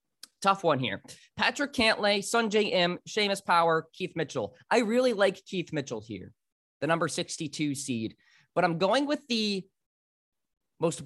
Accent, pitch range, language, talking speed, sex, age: American, 145-205 Hz, English, 145 wpm, male, 20-39